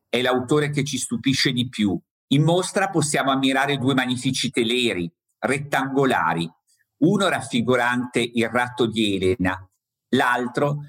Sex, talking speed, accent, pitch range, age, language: male, 120 wpm, native, 110-140 Hz, 50-69, Italian